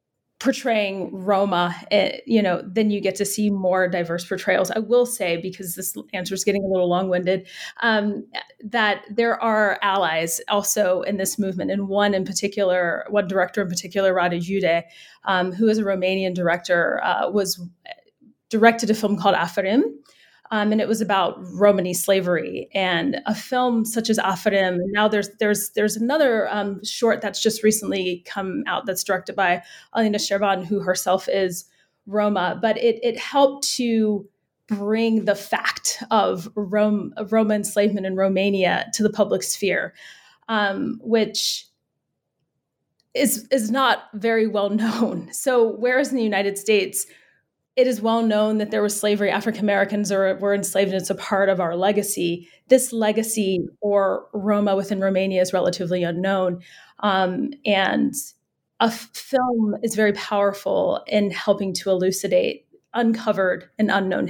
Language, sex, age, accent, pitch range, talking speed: English, female, 30-49, American, 190-220 Hz, 150 wpm